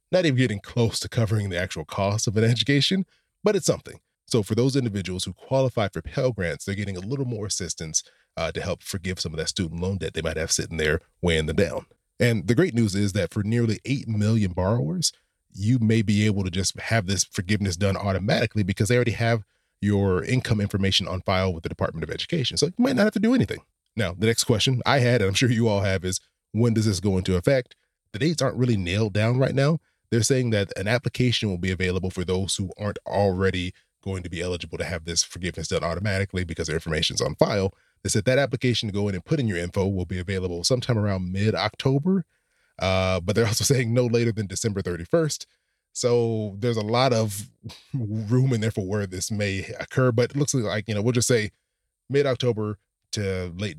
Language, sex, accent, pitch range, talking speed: English, male, American, 95-120 Hz, 225 wpm